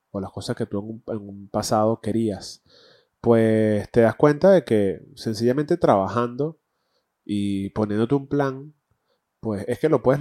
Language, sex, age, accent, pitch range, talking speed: Spanish, male, 20-39, Argentinian, 100-125 Hz, 165 wpm